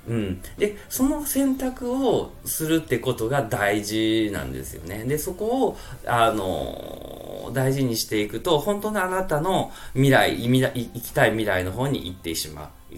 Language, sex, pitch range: Japanese, male, 95-140 Hz